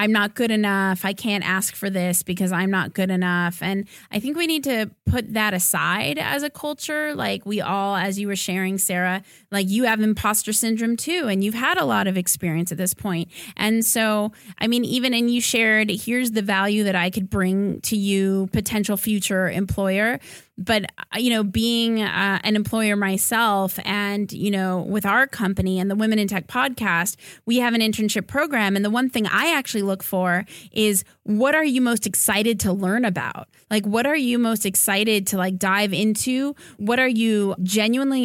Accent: American